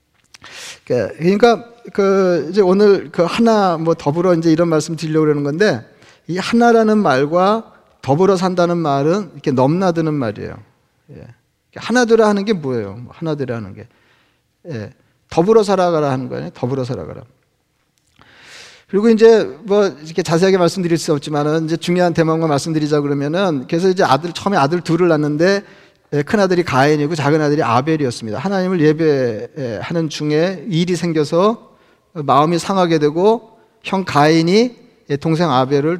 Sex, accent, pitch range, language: male, native, 145-195 Hz, Korean